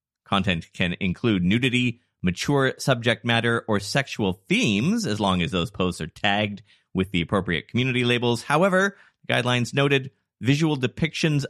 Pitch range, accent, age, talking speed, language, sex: 90-130 Hz, American, 30-49, 140 wpm, English, male